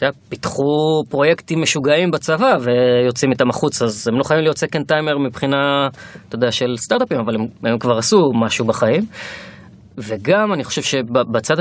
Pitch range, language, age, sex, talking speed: 110-150 Hz, Hebrew, 20-39, female, 160 wpm